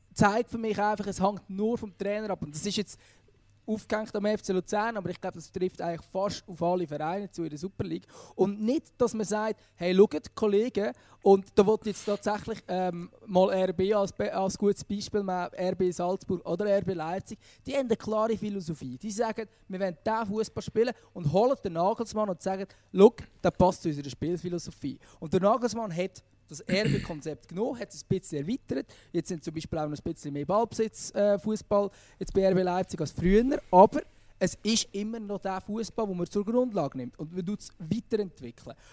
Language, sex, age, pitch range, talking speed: German, male, 20-39, 170-215 Hz, 200 wpm